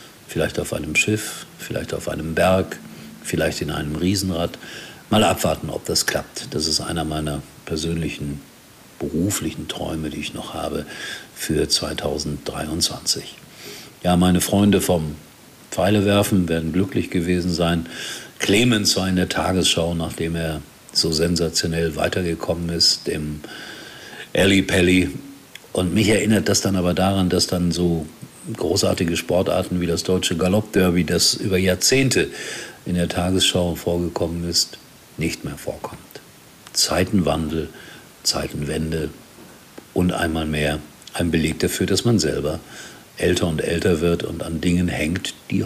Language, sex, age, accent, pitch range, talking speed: German, male, 50-69, German, 80-95 Hz, 130 wpm